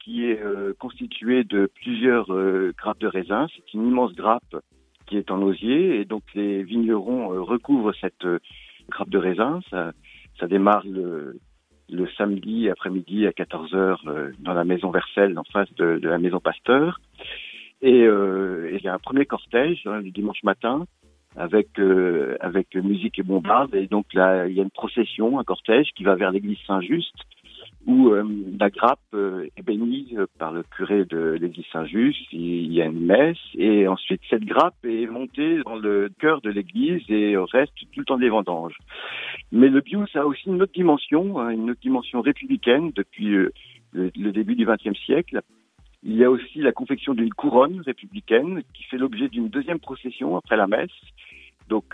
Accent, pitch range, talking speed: French, 95-125 Hz, 180 wpm